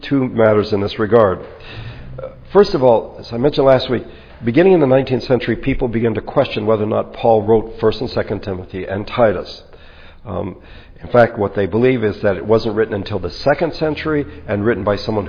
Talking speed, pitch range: 205 wpm, 100-125 Hz